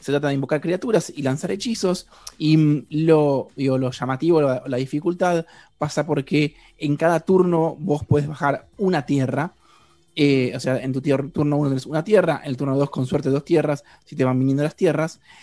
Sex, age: male, 20-39